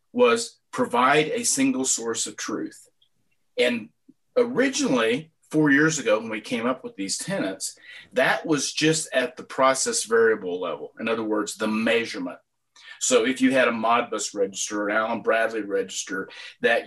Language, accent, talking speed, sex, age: English, American, 160 wpm, male, 40-59